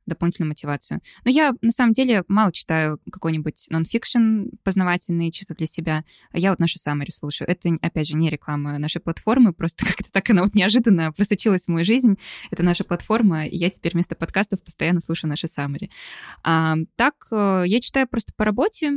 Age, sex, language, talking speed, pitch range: 20-39, female, Russian, 175 wpm, 165-225 Hz